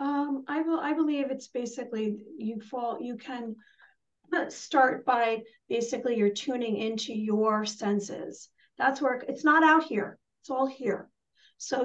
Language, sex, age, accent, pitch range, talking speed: English, female, 40-59, American, 220-275 Hz, 145 wpm